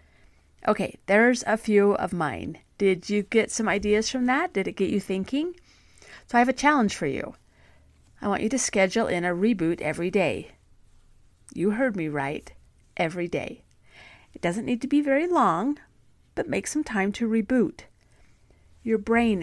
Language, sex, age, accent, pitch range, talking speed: English, female, 40-59, American, 175-235 Hz, 175 wpm